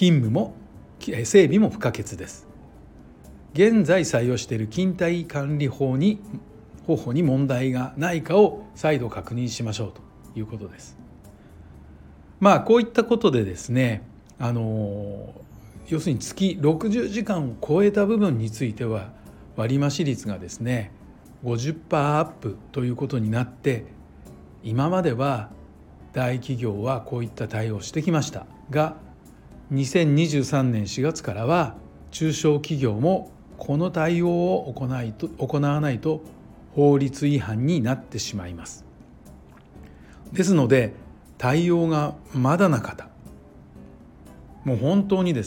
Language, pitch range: Japanese, 110-155 Hz